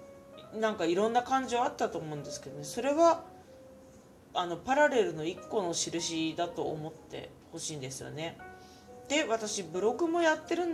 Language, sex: Japanese, female